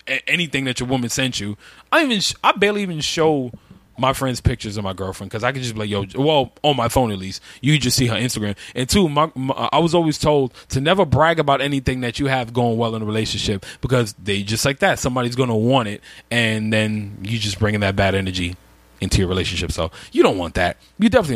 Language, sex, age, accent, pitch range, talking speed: English, male, 20-39, American, 105-170 Hz, 230 wpm